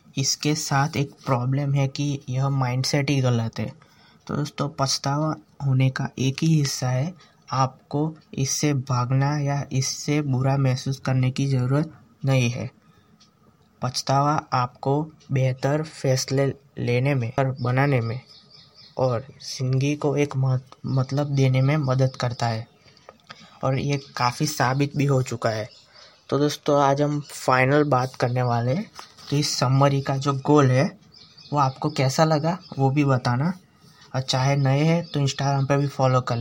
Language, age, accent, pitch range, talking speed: Hindi, 20-39, native, 130-145 Hz, 155 wpm